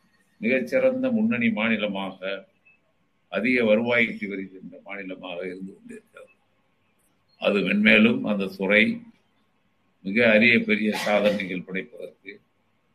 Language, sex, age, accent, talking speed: Tamil, male, 50-69, native, 85 wpm